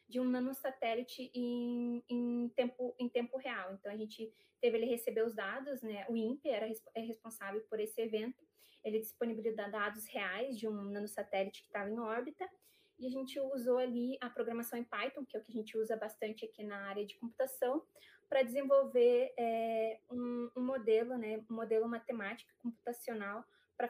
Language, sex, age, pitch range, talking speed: Portuguese, female, 20-39, 220-255 Hz, 180 wpm